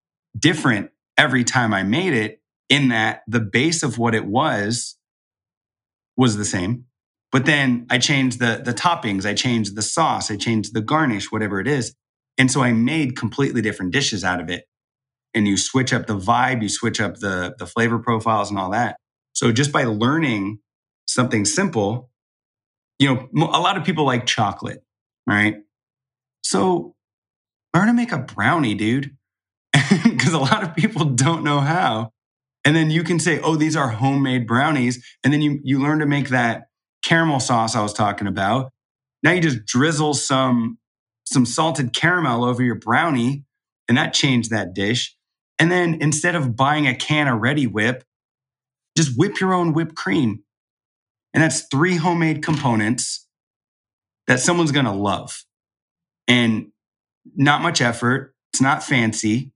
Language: English